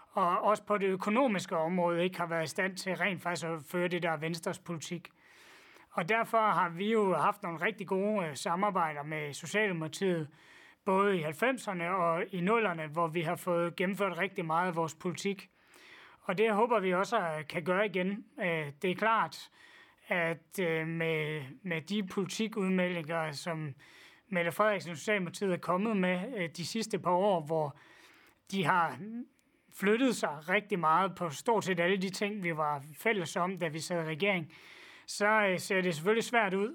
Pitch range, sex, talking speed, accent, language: 165-205 Hz, male, 165 wpm, native, Danish